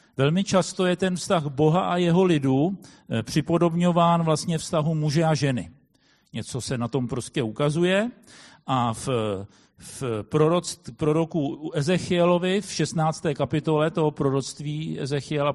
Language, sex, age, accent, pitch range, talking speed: Czech, male, 50-69, native, 130-170 Hz, 125 wpm